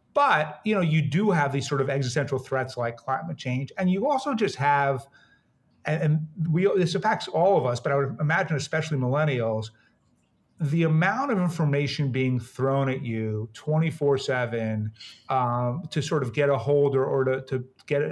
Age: 30-49